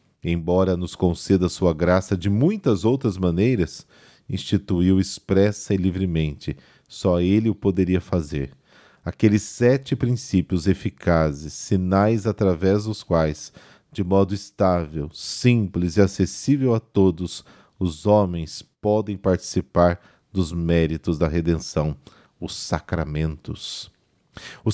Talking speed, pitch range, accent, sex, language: 110 wpm, 85-110 Hz, Brazilian, male, Portuguese